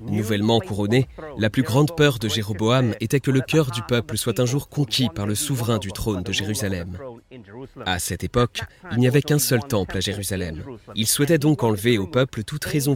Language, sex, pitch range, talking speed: French, male, 100-130 Hz, 205 wpm